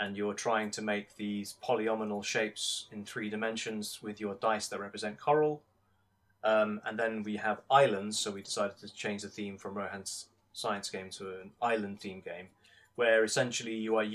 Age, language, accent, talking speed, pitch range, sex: 20-39, English, British, 180 wpm, 105-125 Hz, male